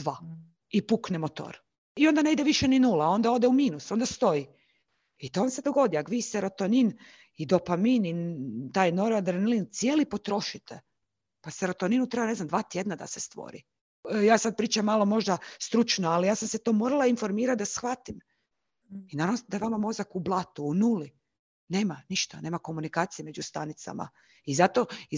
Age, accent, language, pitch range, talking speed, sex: 40-59, native, Croatian, 170-230 Hz, 185 wpm, female